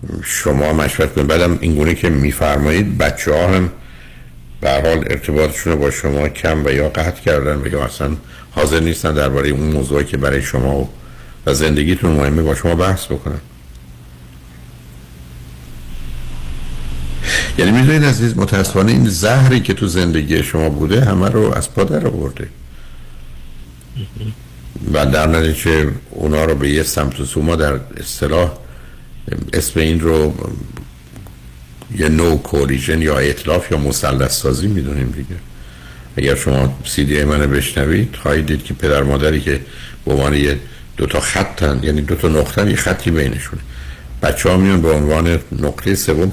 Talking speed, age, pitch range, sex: 145 wpm, 60-79, 65-80 Hz, male